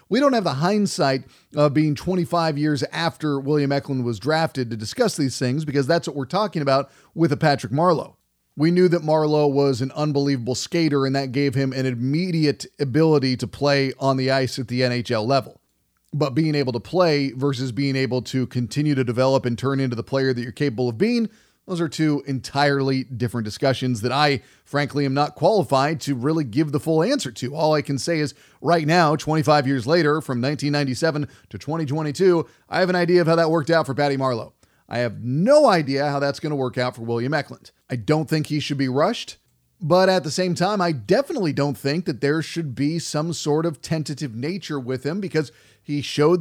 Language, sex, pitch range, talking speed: English, male, 135-160 Hz, 210 wpm